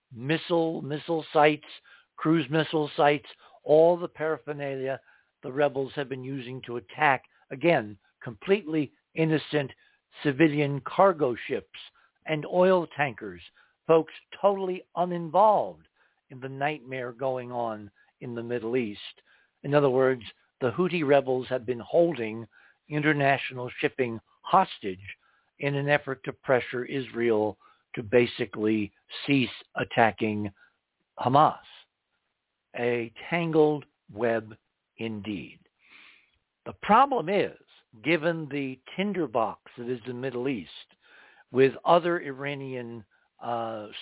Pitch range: 120-155 Hz